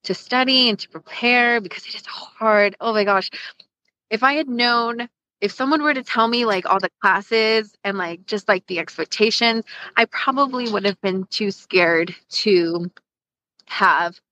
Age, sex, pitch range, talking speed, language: 20-39, female, 175-230 Hz, 170 wpm, English